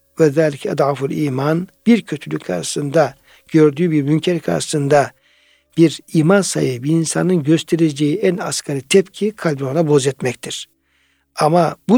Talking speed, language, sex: 115 wpm, Turkish, male